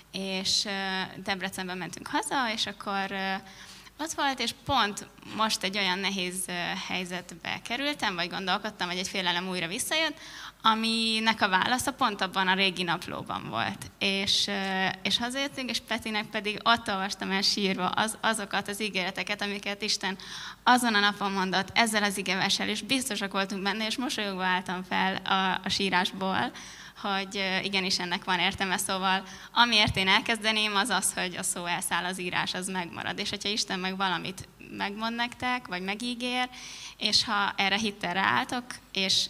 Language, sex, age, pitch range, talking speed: Hungarian, female, 20-39, 190-215 Hz, 150 wpm